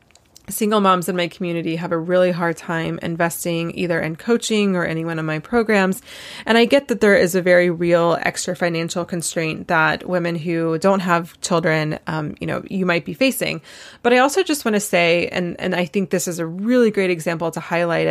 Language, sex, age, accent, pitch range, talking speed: English, female, 20-39, American, 165-190 Hz, 210 wpm